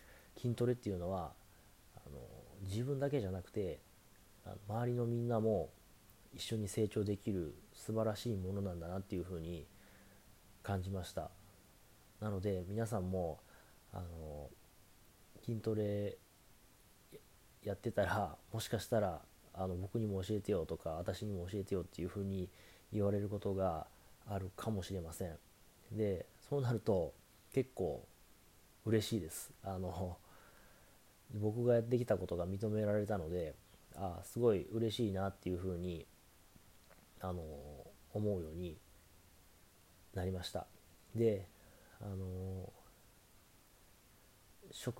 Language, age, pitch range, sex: Japanese, 30-49, 90-110 Hz, male